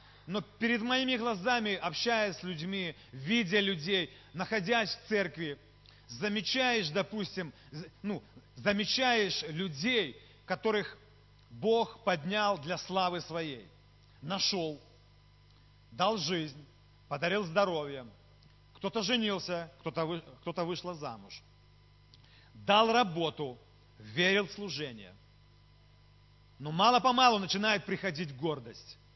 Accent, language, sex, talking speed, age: native, Russian, male, 90 wpm, 40-59